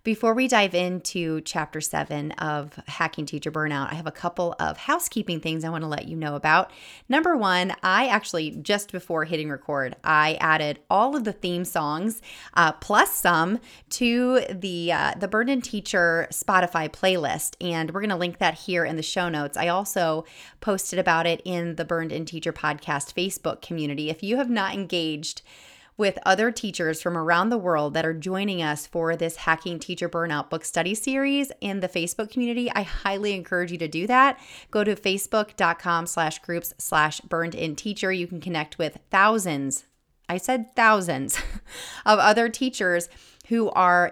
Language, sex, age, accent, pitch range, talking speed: English, female, 30-49, American, 160-205 Hz, 180 wpm